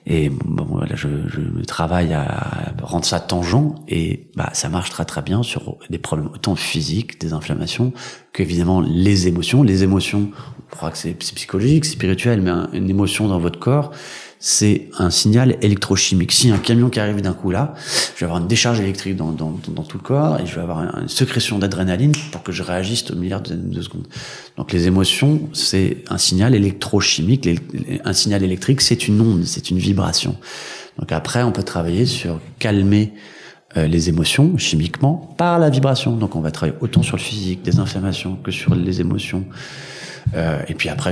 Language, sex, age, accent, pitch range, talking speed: French, male, 30-49, French, 85-110 Hz, 190 wpm